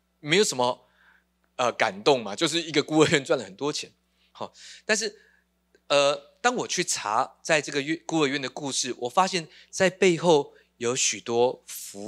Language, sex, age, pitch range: Chinese, male, 20-39, 120-180 Hz